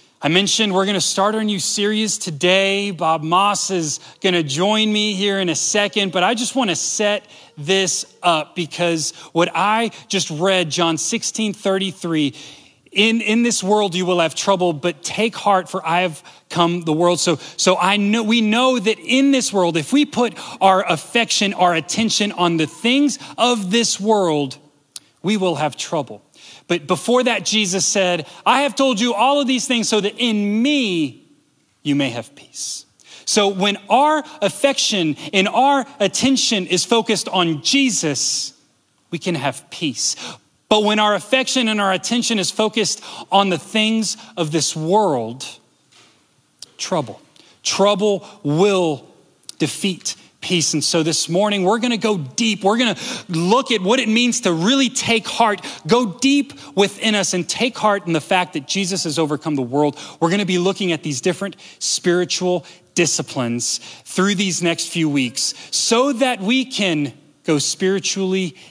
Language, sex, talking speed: English, male, 170 wpm